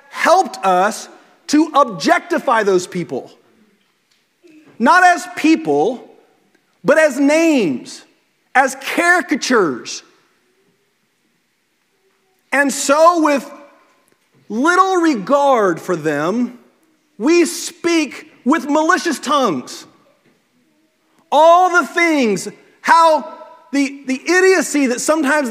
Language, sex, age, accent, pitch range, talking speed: English, male, 40-59, American, 265-330 Hz, 80 wpm